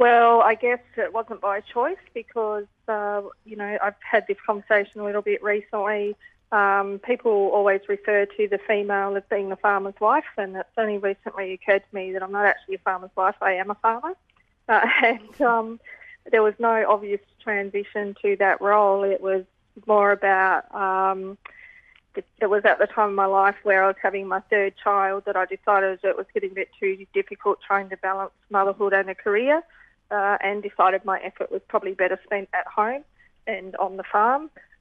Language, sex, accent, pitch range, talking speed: English, female, Australian, 195-215 Hz, 195 wpm